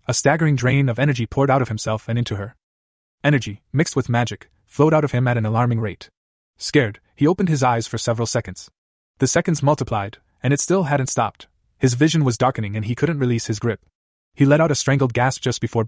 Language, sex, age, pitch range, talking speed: English, male, 20-39, 110-140 Hz, 220 wpm